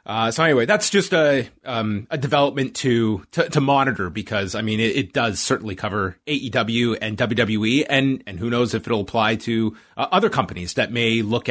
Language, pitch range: English, 110-150 Hz